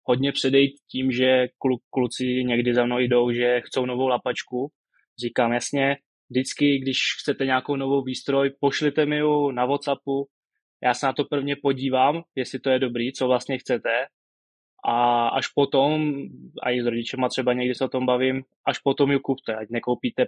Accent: native